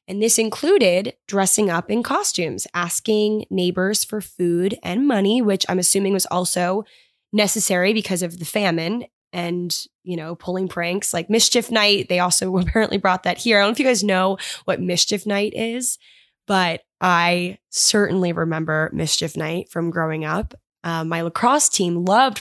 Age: 10-29